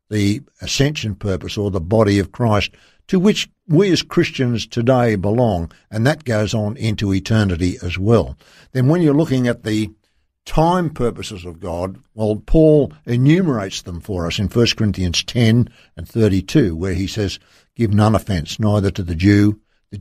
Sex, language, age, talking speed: male, English, 60-79, 170 wpm